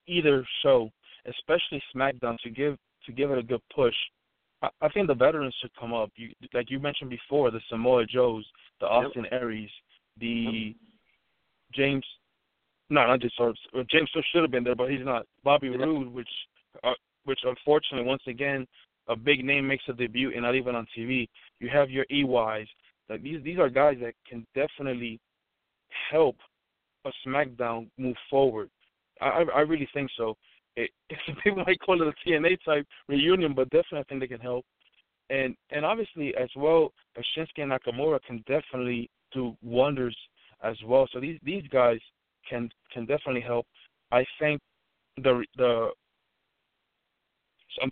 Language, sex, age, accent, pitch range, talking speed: English, male, 20-39, American, 120-145 Hz, 165 wpm